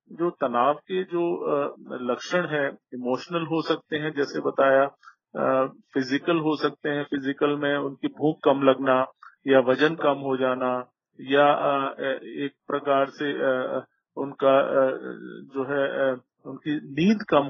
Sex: male